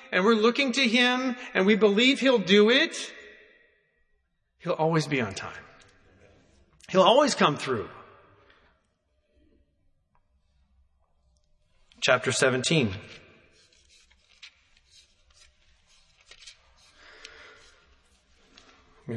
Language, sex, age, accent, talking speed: English, male, 40-59, American, 70 wpm